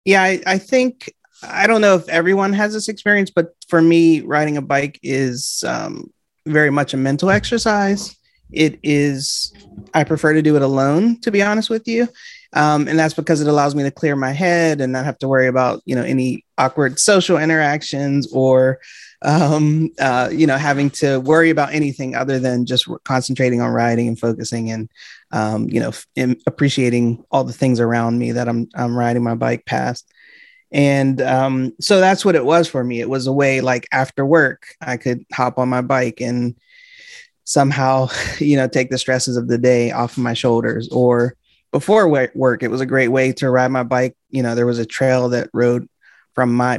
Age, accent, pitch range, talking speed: 30-49, American, 125-160 Hz, 200 wpm